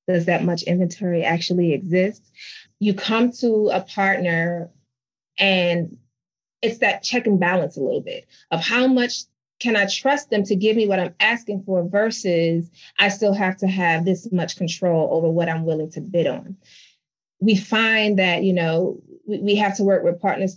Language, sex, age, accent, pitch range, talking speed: English, female, 30-49, American, 175-220 Hz, 180 wpm